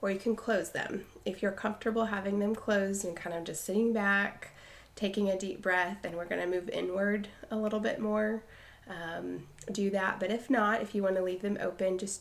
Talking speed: 220 wpm